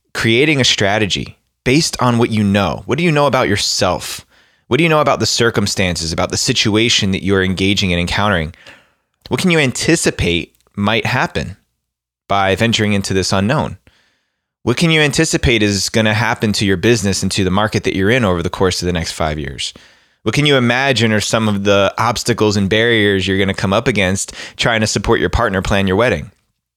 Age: 20-39